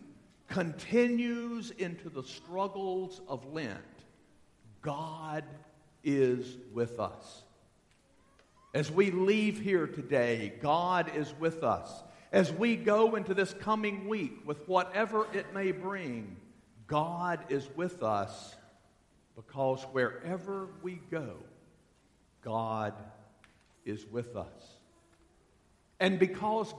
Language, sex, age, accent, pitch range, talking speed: English, male, 50-69, American, 120-185 Hz, 100 wpm